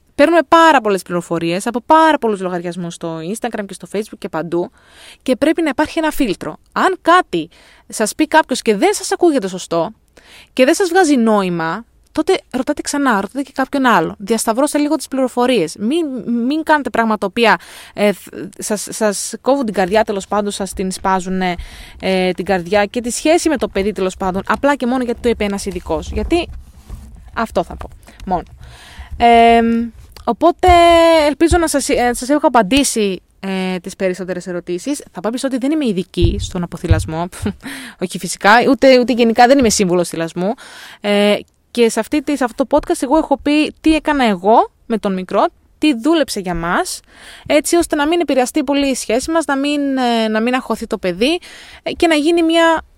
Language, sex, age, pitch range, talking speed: Greek, female, 20-39, 205-300 Hz, 175 wpm